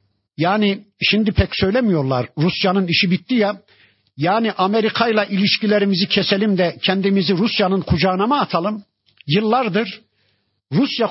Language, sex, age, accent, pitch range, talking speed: Turkish, male, 50-69, native, 155-205 Hz, 115 wpm